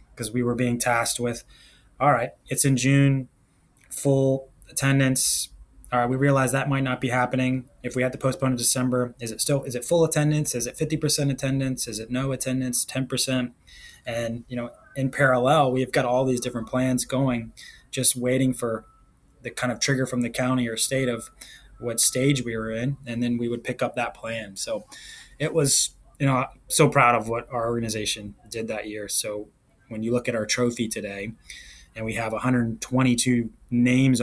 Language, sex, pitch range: English, male, 110-130 Hz